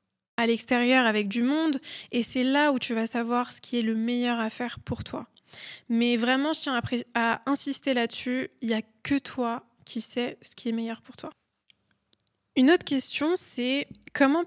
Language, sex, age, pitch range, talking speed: French, female, 20-39, 230-270 Hz, 190 wpm